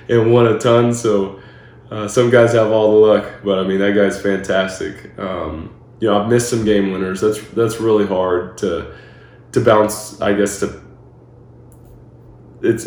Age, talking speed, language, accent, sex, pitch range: 20-39, 175 wpm, English, American, male, 95-110 Hz